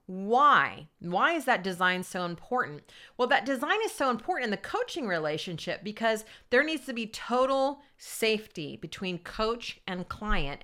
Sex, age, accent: female, 40-59, American